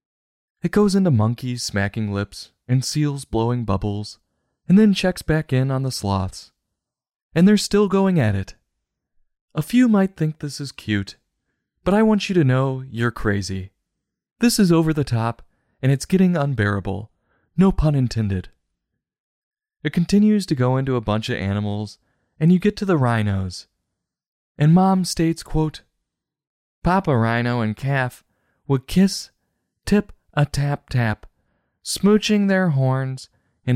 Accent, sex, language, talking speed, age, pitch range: American, male, English, 150 wpm, 20-39, 110-170 Hz